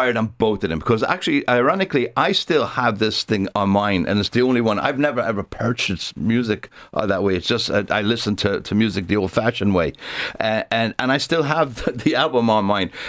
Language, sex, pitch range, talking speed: English, male, 105-145 Hz, 215 wpm